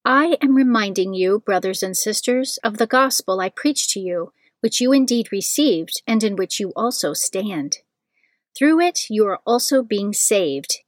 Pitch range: 195-250 Hz